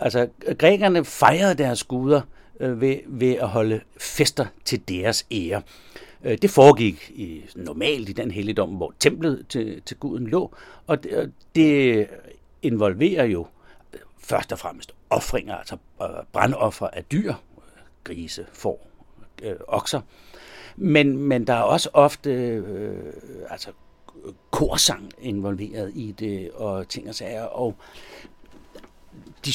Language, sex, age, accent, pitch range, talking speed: Danish, male, 60-79, native, 105-135 Hz, 125 wpm